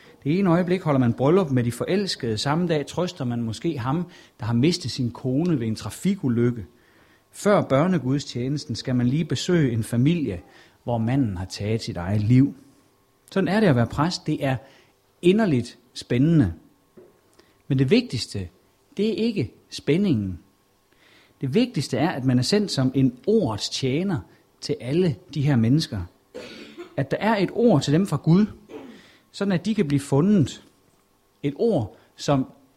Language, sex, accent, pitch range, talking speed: Danish, male, native, 120-170 Hz, 160 wpm